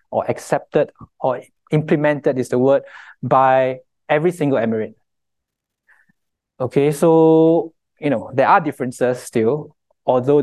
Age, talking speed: 20-39, 115 wpm